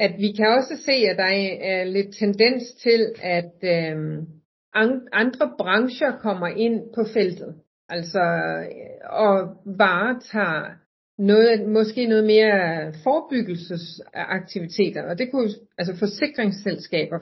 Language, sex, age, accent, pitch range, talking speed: Danish, female, 40-59, native, 170-215 Hz, 110 wpm